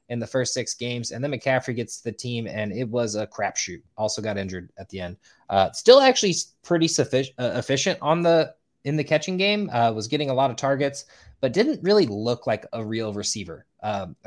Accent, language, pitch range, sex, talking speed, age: American, English, 110-135 Hz, male, 220 wpm, 20-39